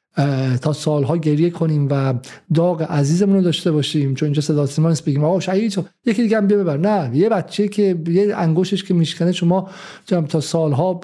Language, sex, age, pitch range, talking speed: Persian, male, 50-69, 165-210 Hz, 170 wpm